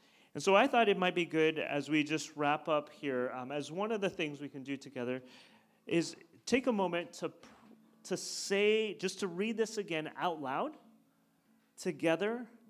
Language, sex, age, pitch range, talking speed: English, male, 30-49, 130-185 Hz, 185 wpm